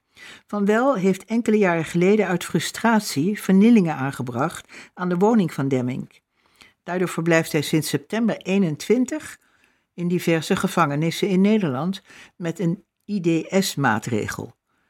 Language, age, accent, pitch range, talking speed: Dutch, 60-79, Dutch, 150-205 Hz, 115 wpm